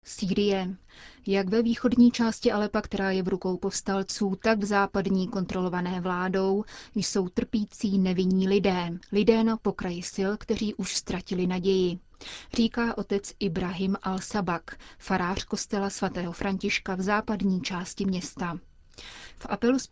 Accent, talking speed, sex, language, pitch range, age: native, 125 wpm, female, Czech, 185-210 Hz, 30-49